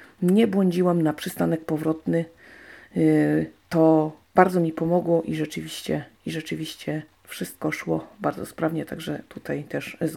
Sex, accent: female, native